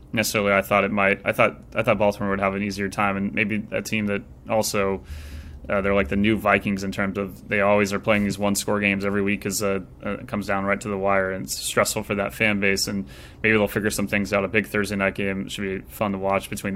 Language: English